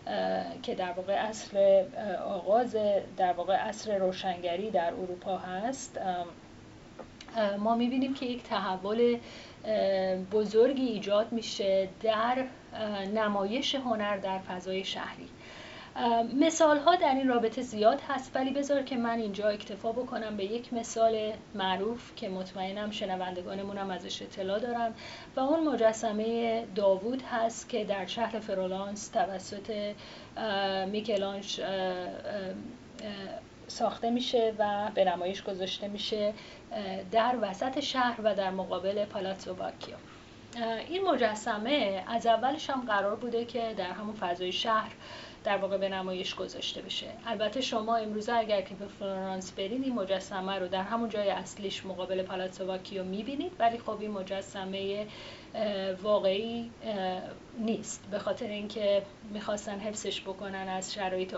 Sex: female